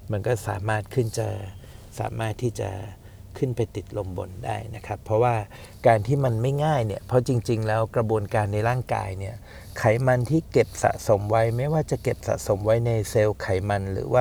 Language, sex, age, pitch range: Thai, male, 60-79, 100-120 Hz